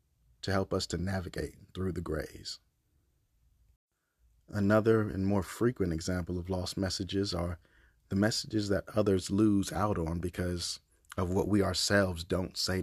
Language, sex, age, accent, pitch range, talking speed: English, male, 30-49, American, 85-105 Hz, 145 wpm